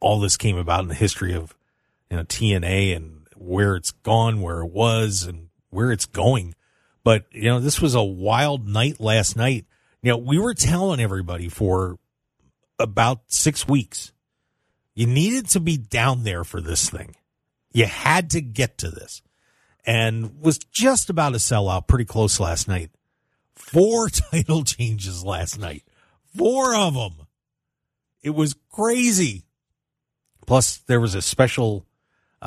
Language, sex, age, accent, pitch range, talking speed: English, male, 40-59, American, 95-130 Hz, 155 wpm